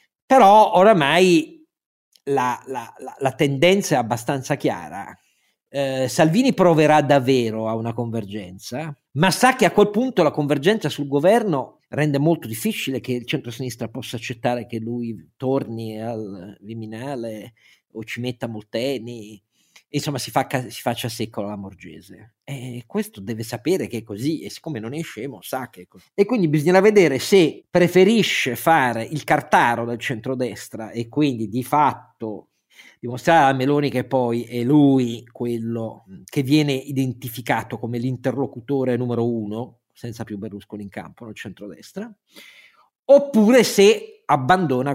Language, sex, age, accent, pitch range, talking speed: Italian, male, 50-69, native, 115-165 Hz, 145 wpm